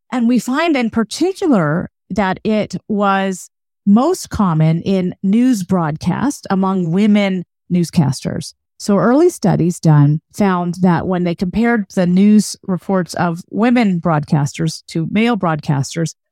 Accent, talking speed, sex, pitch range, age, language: American, 125 wpm, female, 170-230 Hz, 40-59, English